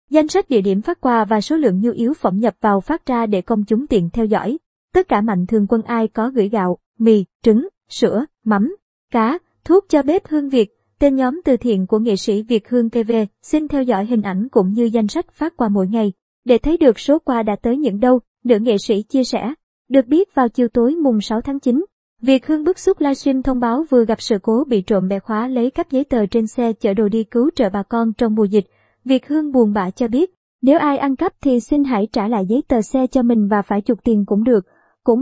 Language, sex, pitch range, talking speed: Vietnamese, male, 220-270 Hz, 245 wpm